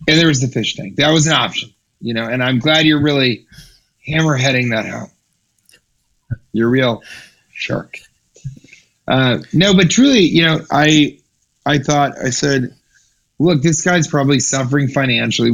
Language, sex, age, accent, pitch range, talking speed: English, male, 30-49, American, 120-145 Hz, 160 wpm